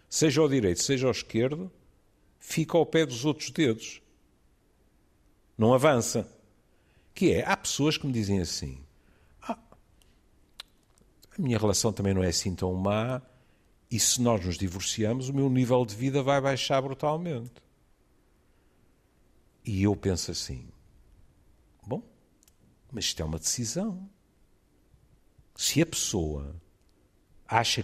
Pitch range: 90-140 Hz